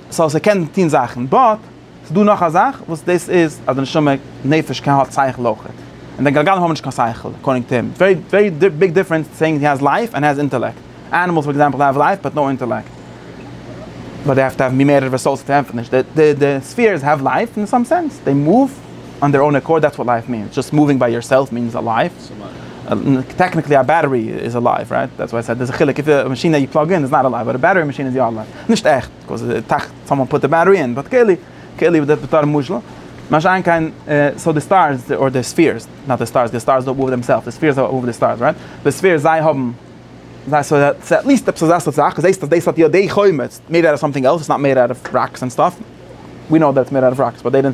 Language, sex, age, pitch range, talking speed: English, male, 30-49, 130-170 Hz, 205 wpm